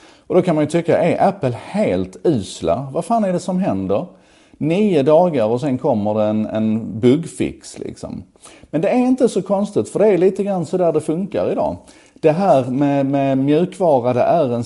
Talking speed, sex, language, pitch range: 205 wpm, male, Swedish, 100-160 Hz